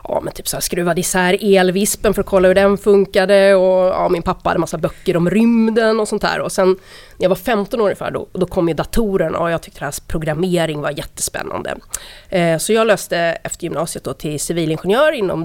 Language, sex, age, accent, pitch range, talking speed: English, female, 30-49, Swedish, 170-200 Hz, 220 wpm